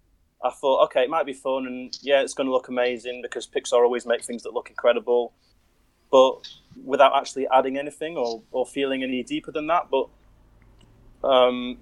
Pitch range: 120-145 Hz